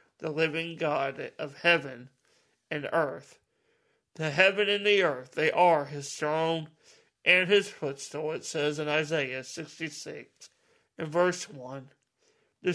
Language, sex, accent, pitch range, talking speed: English, male, American, 145-195 Hz, 130 wpm